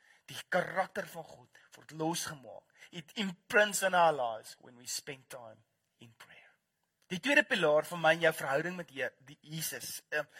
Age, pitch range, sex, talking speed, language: 30-49, 155-195 Hz, male, 165 wpm, English